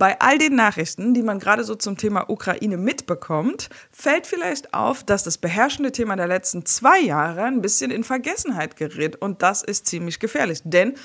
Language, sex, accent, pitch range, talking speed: German, female, German, 170-230 Hz, 185 wpm